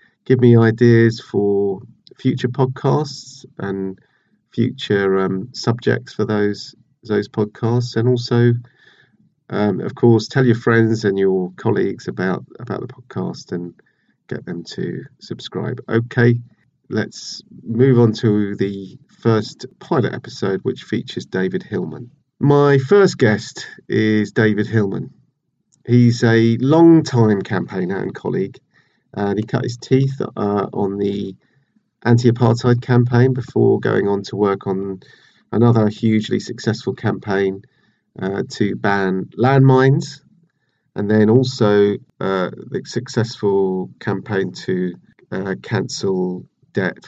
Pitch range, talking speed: 100-125 Hz, 120 wpm